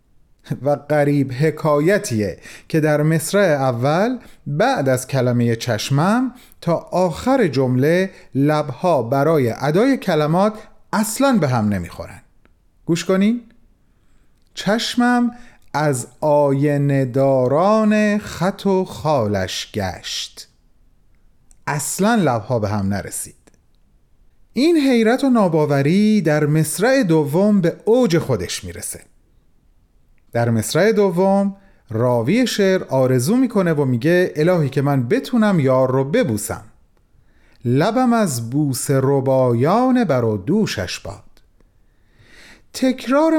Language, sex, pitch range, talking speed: Persian, male, 135-215 Hz, 100 wpm